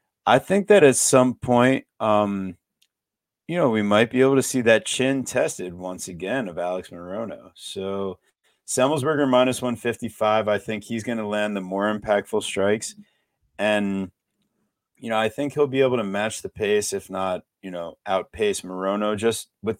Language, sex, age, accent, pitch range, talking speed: English, male, 30-49, American, 100-135 Hz, 175 wpm